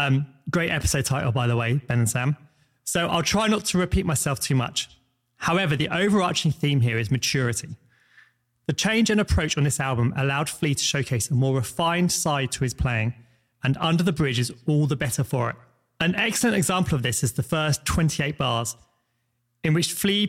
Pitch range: 120-160 Hz